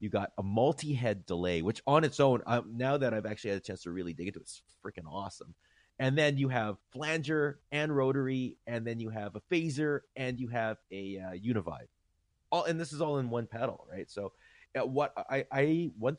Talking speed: 220 wpm